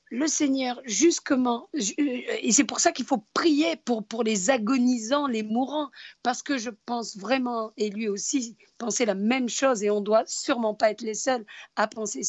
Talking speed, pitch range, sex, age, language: 190 wpm, 240-300 Hz, female, 50-69, French